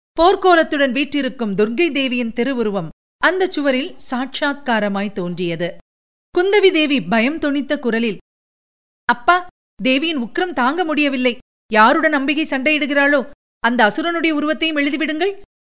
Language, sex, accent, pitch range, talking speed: Tamil, female, native, 210-295 Hz, 100 wpm